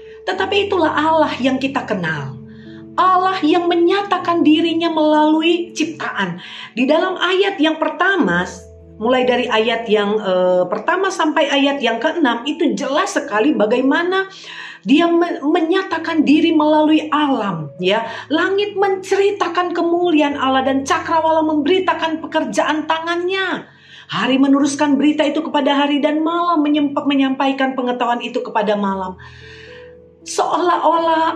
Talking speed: 120 wpm